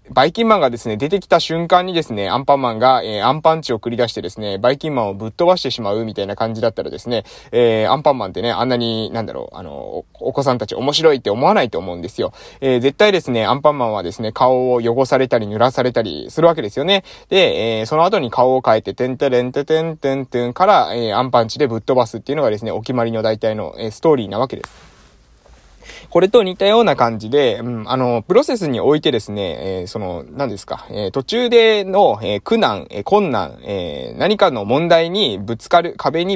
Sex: male